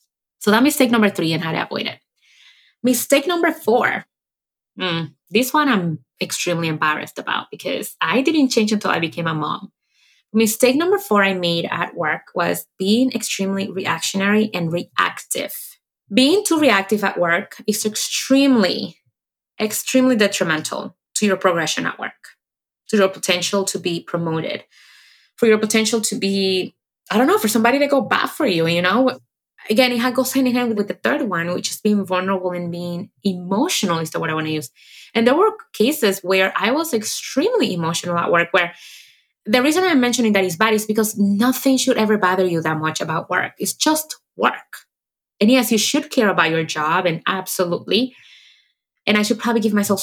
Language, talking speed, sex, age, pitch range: English, 180 wpm, female, 20-39, 170-245 Hz